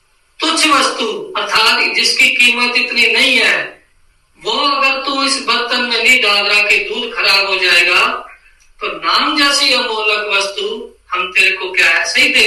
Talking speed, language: 75 wpm, Hindi